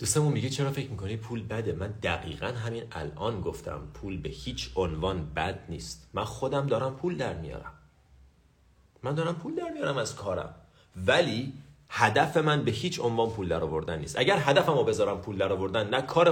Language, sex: Persian, male